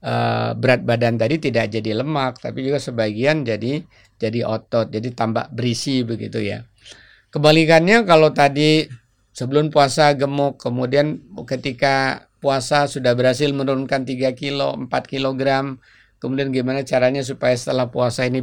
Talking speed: 130 wpm